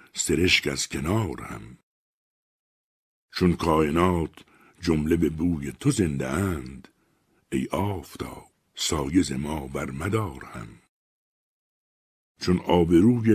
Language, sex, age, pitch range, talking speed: Persian, male, 60-79, 75-95 Hz, 100 wpm